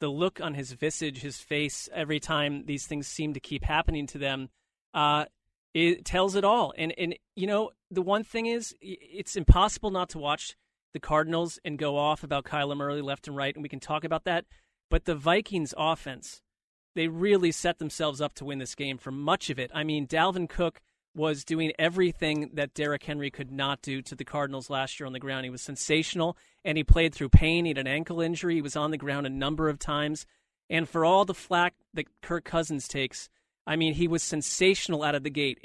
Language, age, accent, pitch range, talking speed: English, 40-59, American, 145-170 Hz, 220 wpm